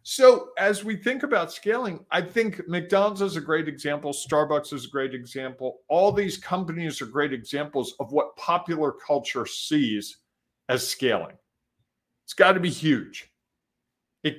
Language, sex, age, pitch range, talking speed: English, male, 50-69, 140-190 Hz, 155 wpm